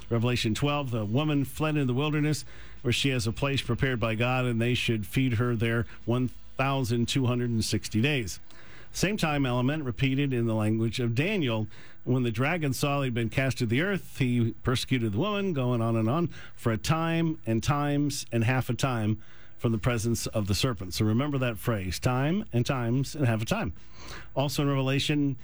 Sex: male